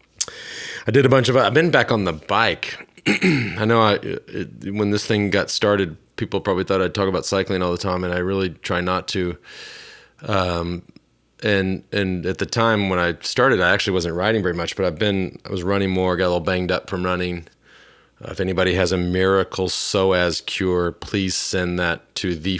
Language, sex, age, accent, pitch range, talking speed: English, male, 30-49, American, 90-100 Hz, 210 wpm